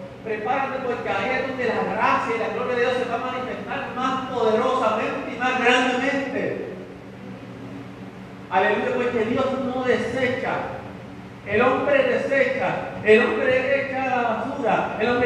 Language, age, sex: Spanish, 40-59, male